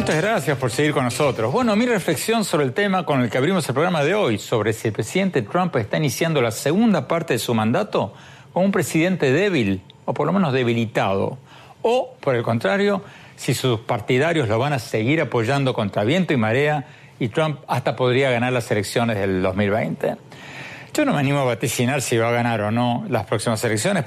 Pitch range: 115-160 Hz